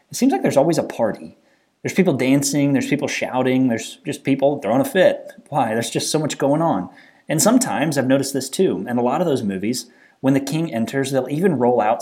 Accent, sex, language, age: American, male, English, 30-49